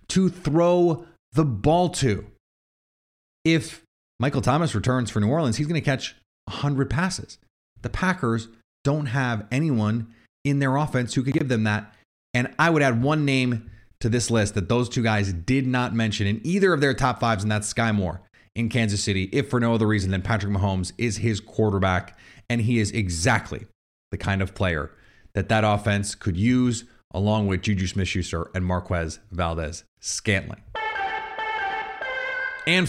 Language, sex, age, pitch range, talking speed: English, male, 30-49, 105-150 Hz, 165 wpm